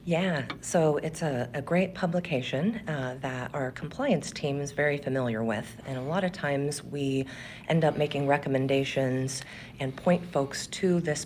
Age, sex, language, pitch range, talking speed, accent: 40-59, female, English, 130-165 Hz, 165 wpm, American